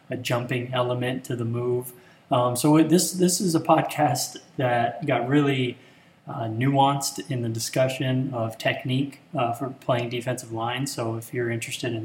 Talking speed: 165 wpm